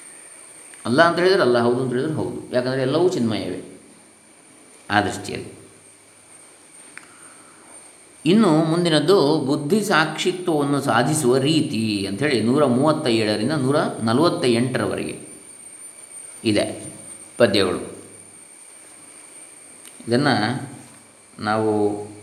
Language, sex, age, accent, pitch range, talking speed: Kannada, male, 20-39, native, 105-130 Hz, 80 wpm